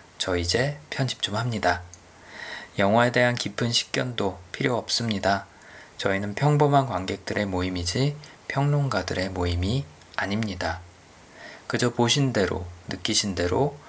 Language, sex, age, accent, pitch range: Korean, male, 20-39, native, 90-130 Hz